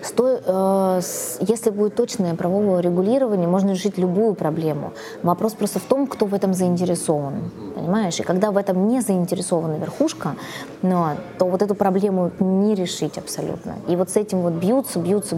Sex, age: female, 20-39